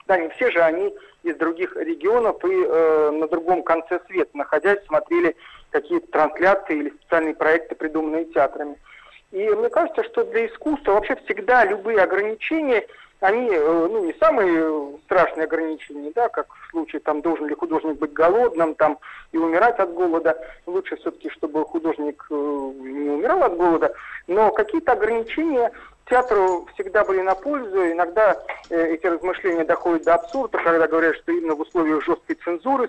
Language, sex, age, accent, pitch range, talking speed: Russian, male, 50-69, native, 160-240 Hz, 155 wpm